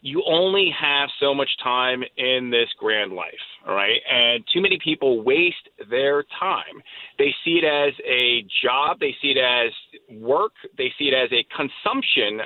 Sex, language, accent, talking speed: male, English, American, 175 wpm